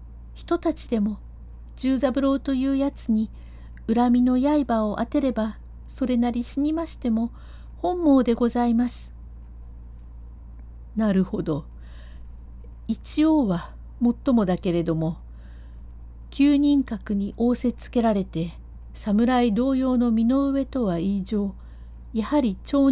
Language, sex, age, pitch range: Japanese, female, 60-79, 150-250 Hz